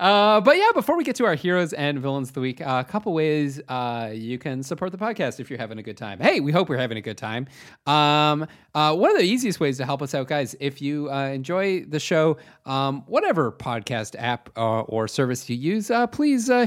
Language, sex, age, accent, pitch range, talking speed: English, male, 30-49, American, 115-150 Hz, 250 wpm